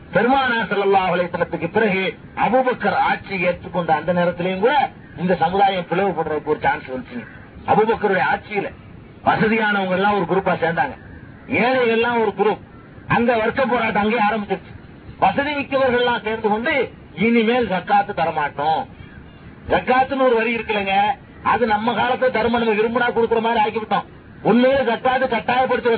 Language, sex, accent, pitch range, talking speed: Tamil, male, native, 200-255 Hz, 105 wpm